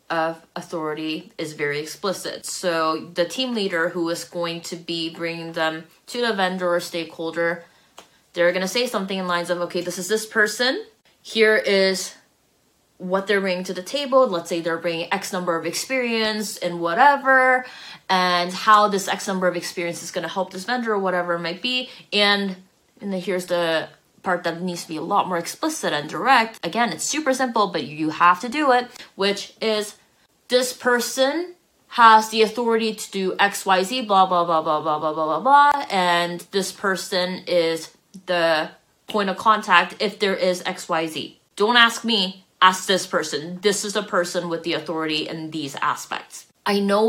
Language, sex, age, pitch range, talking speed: English, female, 20-39, 170-210 Hz, 185 wpm